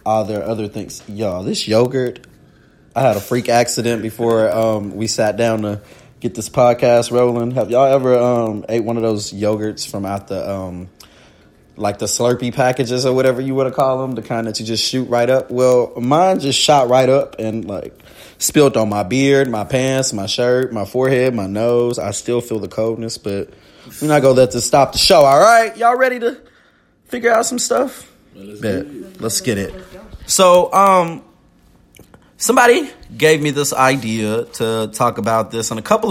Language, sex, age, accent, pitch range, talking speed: English, male, 20-39, American, 105-130 Hz, 195 wpm